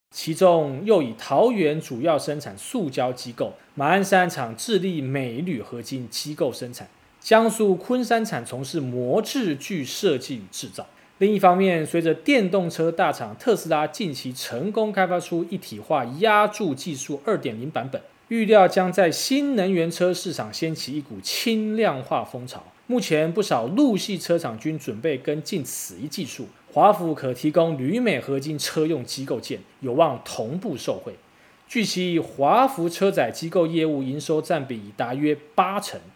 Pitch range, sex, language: 135-195 Hz, male, Chinese